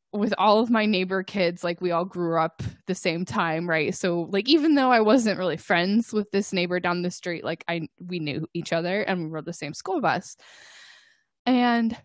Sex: female